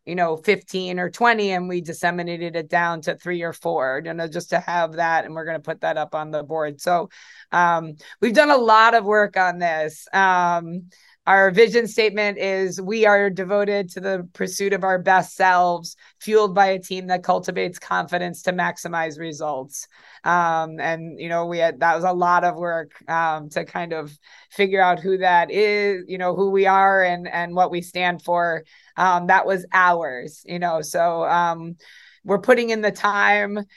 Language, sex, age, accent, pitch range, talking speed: English, female, 20-39, American, 175-210 Hz, 195 wpm